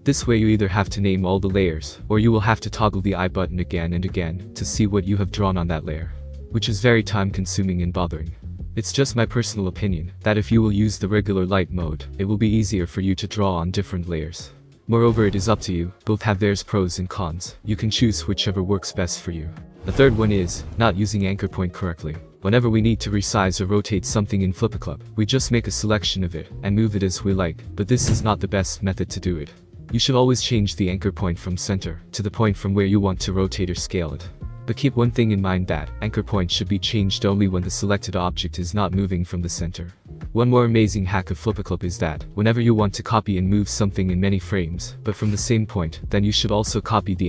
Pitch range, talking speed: 90-110 Hz, 250 wpm